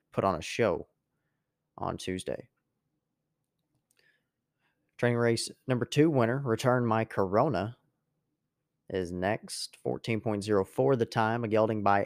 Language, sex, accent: English, male, American